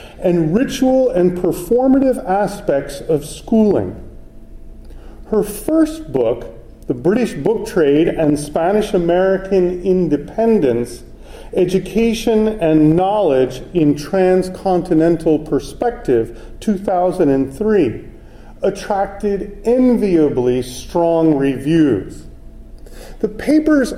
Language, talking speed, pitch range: English, 80 wpm, 160-225 Hz